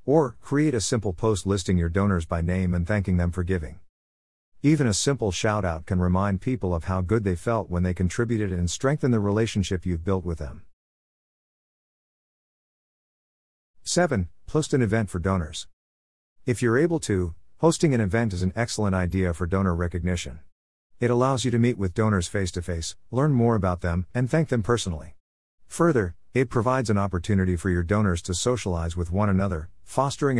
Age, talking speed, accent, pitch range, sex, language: 50-69, 175 wpm, American, 85-115 Hz, male, English